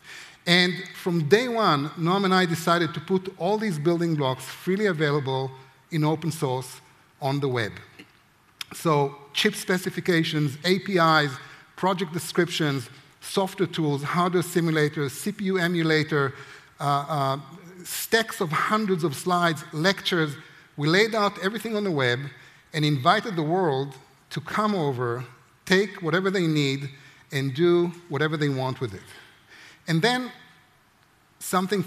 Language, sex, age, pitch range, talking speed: German, male, 50-69, 145-185 Hz, 130 wpm